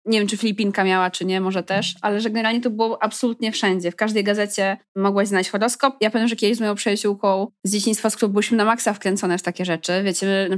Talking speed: 240 wpm